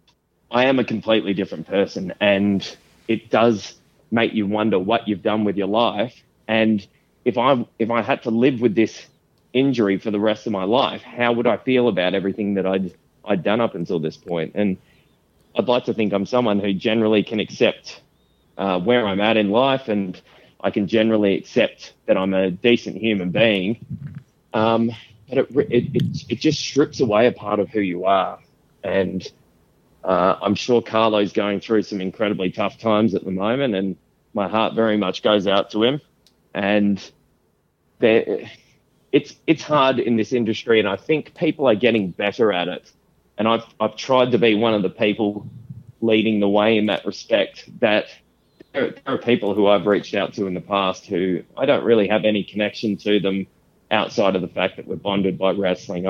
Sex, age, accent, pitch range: male, 20-39, Australian, 100-115 Hz